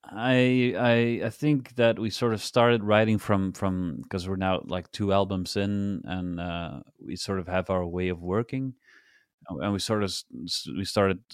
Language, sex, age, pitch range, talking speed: English, male, 30-49, 90-105 Hz, 185 wpm